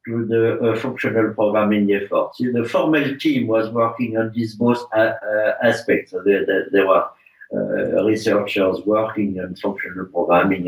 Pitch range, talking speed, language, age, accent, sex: 105-135 Hz, 170 wpm, English, 60-79, French, male